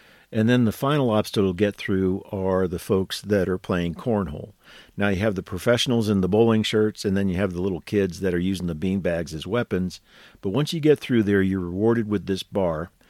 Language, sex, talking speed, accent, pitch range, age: English, male, 220 wpm, American, 95-115 Hz, 50-69